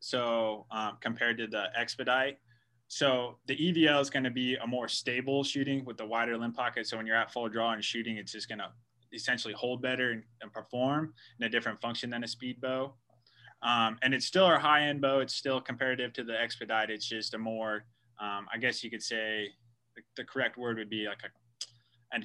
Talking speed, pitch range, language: 215 wpm, 110-125 Hz, English